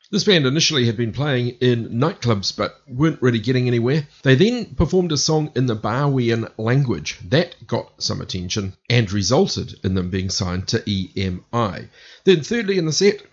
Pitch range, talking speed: 105-135 Hz, 175 wpm